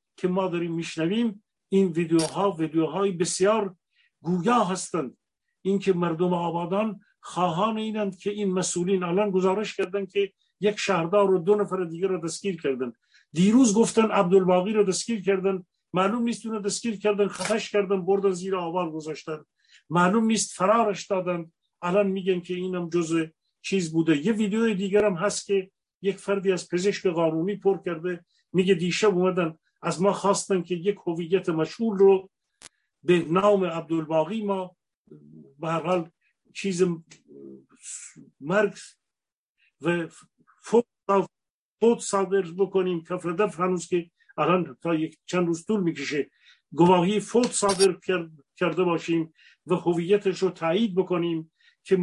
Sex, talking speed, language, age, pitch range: male, 135 wpm, Persian, 50-69, 170-200 Hz